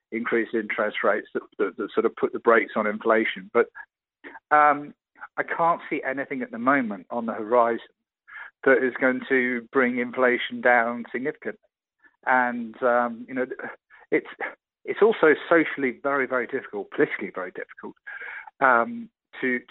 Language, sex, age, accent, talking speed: English, male, 50-69, British, 150 wpm